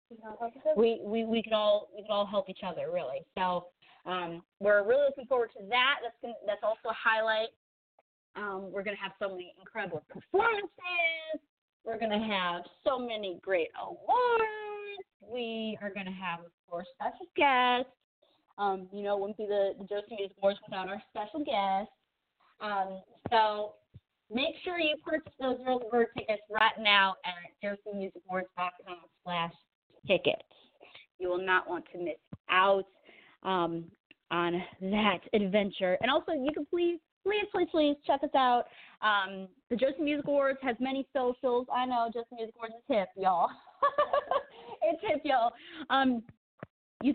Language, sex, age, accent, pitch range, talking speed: English, female, 30-49, American, 200-285 Hz, 155 wpm